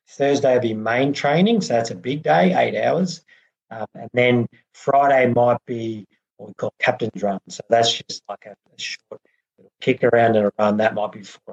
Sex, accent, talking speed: male, Australian, 210 wpm